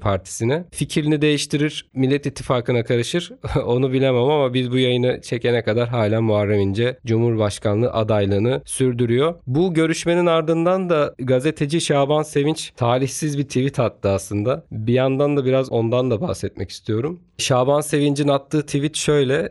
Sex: male